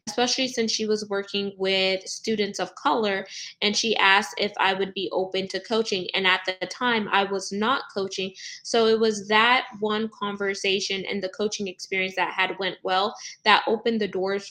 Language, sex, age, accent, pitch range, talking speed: English, female, 20-39, American, 185-215 Hz, 185 wpm